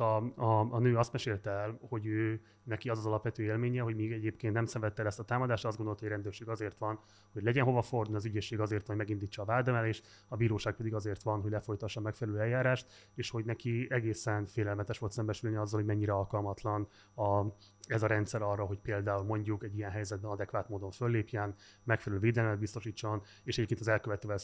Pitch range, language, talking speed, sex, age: 105-120 Hz, Hungarian, 200 wpm, male, 30-49